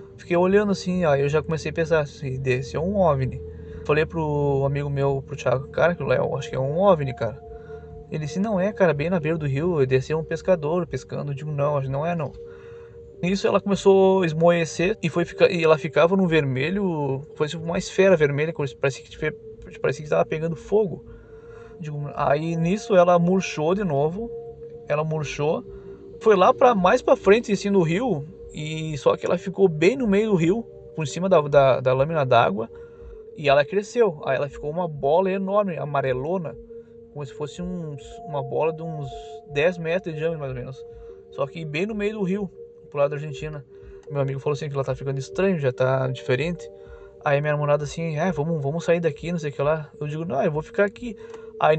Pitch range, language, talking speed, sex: 140-190 Hz, Portuguese, 210 wpm, male